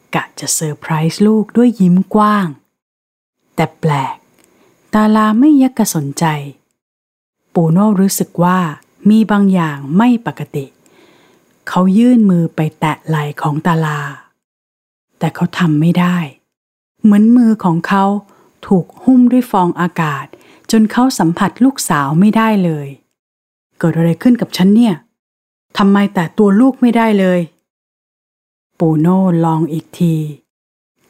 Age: 30-49